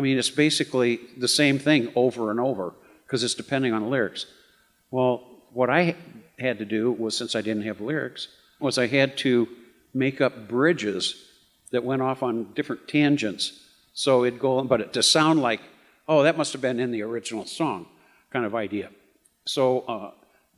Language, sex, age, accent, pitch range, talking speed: English, male, 50-69, American, 110-130 Hz, 185 wpm